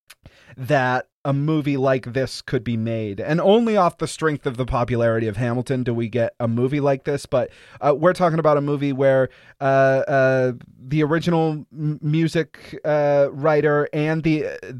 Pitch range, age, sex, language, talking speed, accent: 135-165 Hz, 30-49, male, English, 175 wpm, American